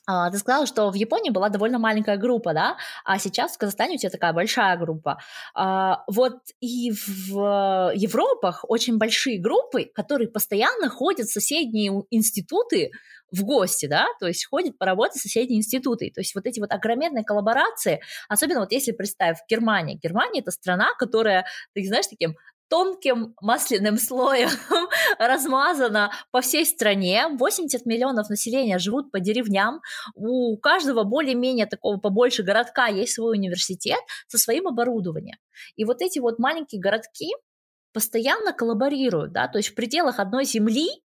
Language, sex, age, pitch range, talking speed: Russian, female, 20-39, 200-260 Hz, 150 wpm